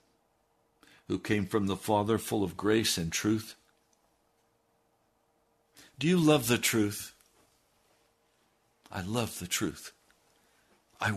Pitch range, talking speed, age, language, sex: 90-120 Hz, 105 wpm, 60-79, English, male